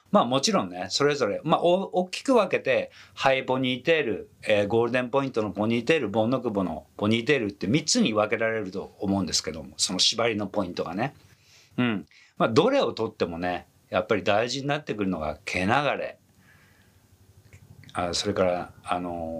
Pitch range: 90-130 Hz